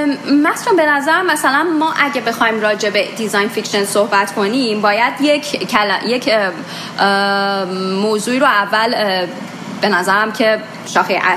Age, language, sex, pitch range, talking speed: 30-49, Persian, female, 195-265 Hz, 115 wpm